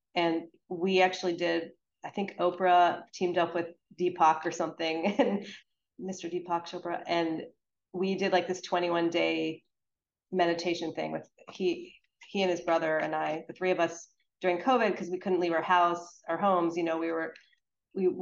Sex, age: female, 30-49